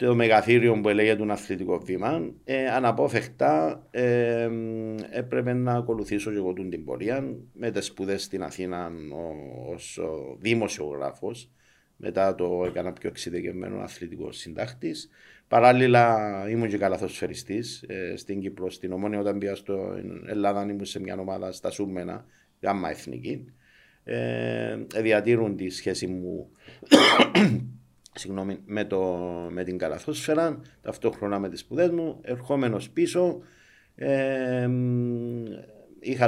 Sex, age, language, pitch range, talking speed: male, 50-69, Greek, 90-120 Hz, 110 wpm